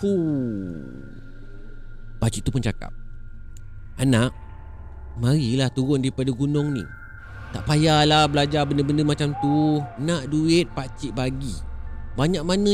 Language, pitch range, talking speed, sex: Malay, 110-165 Hz, 110 wpm, male